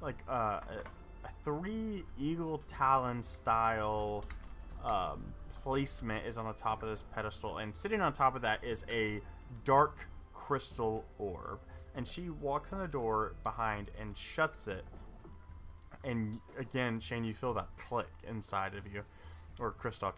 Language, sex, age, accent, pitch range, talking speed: English, male, 20-39, American, 95-130 Hz, 145 wpm